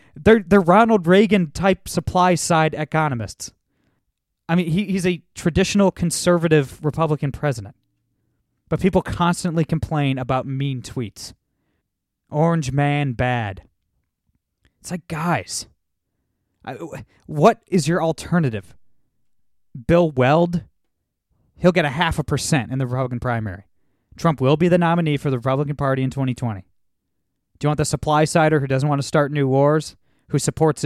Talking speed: 135 wpm